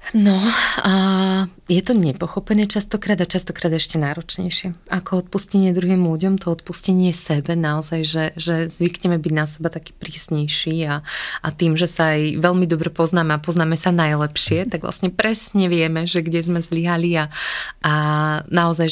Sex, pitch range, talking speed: female, 155-180 Hz, 160 wpm